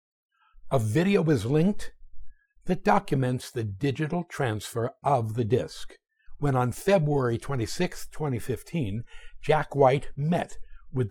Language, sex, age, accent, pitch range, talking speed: English, male, 60-79, American, 120-185 Hz, 115 wpm